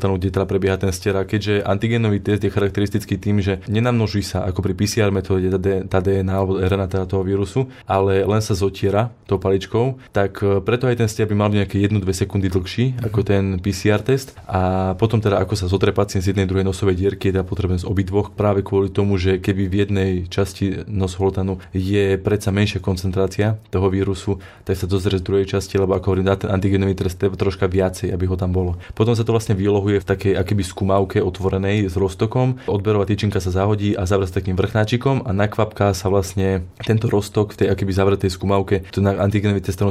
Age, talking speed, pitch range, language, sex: 20-39, 195 wpm, 95-105 Hz, Slovak, male